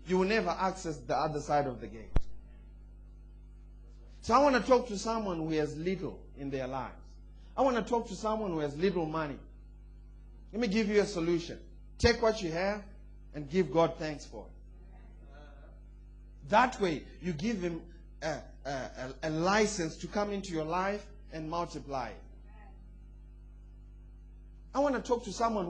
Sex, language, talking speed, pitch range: male, English, 165 wpm, 165-230 Hz